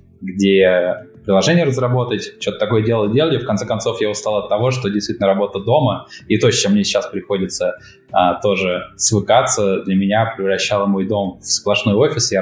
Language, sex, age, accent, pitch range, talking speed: Russian, male, 20-39, native, 95-115 Hz, 180 wpm